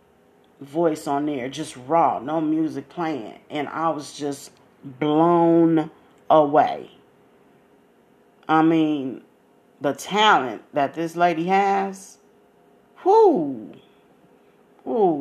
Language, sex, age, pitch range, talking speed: English, female, 40-59, 145-170 Hz, 95 wpm